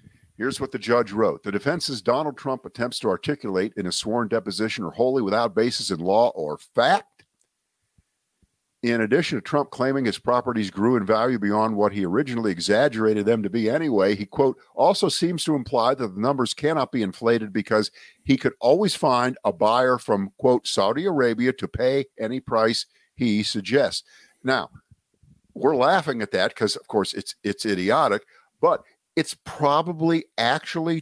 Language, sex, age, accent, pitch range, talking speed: English, male, 50-69, American, 110-145 Hz, 170 wpm